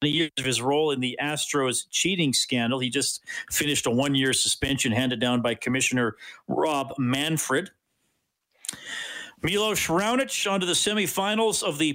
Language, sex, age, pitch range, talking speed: English, male, 50-69, 125-155 Hz, 150 wpm